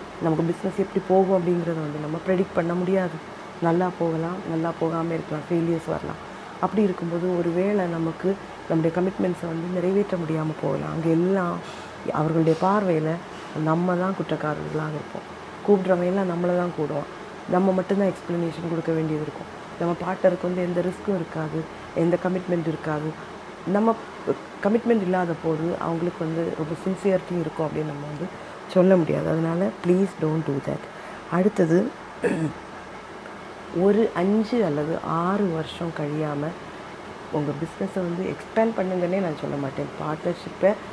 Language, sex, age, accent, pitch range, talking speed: Tamil, female, 30-49, native, 160-190 Hz, 130 wpm